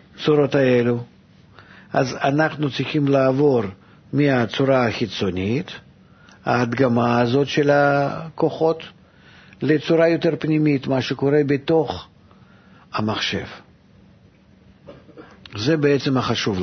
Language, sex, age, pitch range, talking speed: Hebrew, male, 50-69, 130-175 Hz, 80 wpm